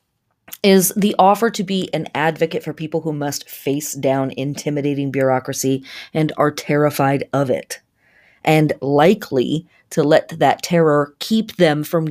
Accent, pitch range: American, 145-185 Hz